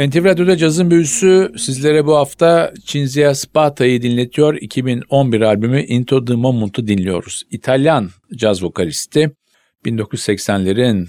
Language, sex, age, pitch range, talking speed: Turkish, male, 50-69, 105-130 Hz, 105 wpm